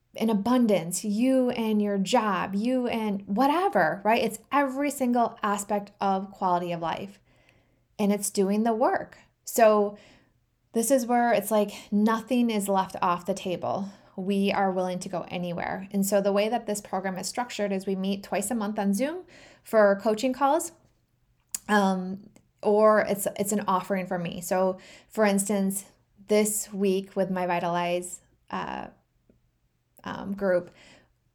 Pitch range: 180-210 Hz